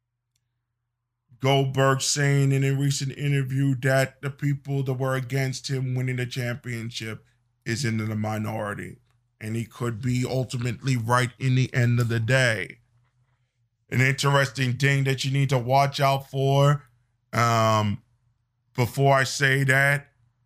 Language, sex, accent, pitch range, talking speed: English, male, American, 120-160 Hz, 140 wpm